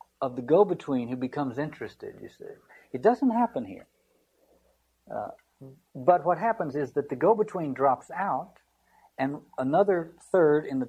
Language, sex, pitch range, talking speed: English, male, 115-180 Hz, 150 wpm